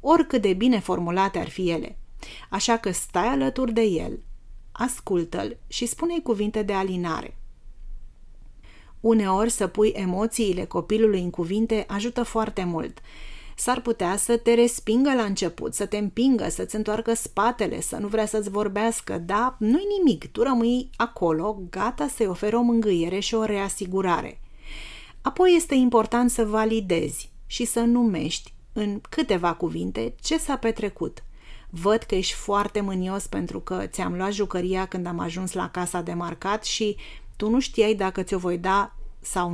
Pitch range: 190-230 Hz